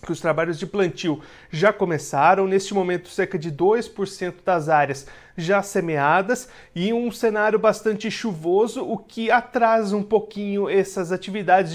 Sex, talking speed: male, 145 wpm